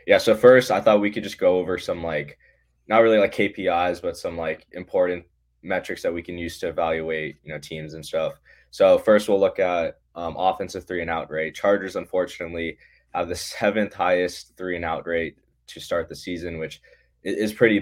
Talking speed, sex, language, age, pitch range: 200 wpm, male, English, 10-29, 85-95 Hz